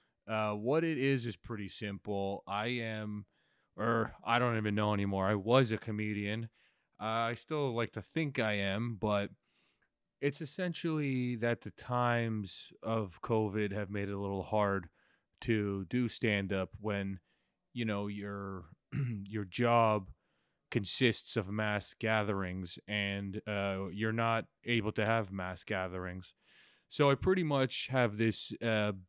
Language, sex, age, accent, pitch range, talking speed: English, male, 30-49, American, 100-120 Hz, 145 wpm